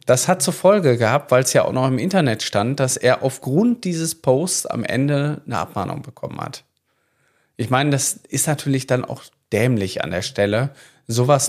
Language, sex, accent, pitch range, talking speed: German, male, German, 115-140 Hz, 190 wpm